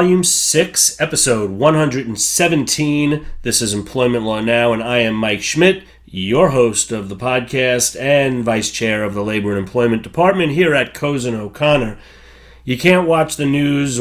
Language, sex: English, male